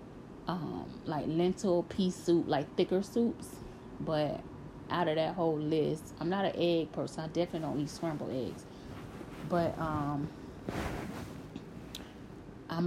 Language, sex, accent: English, female, American